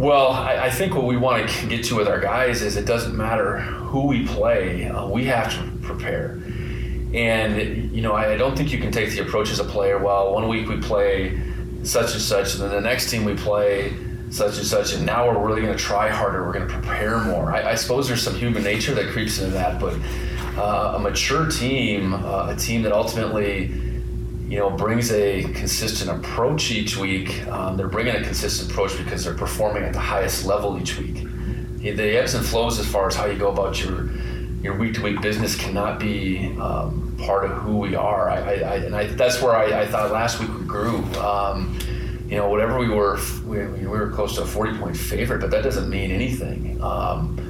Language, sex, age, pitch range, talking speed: English, male, 30-49, 95-115 Hz, 215 wpm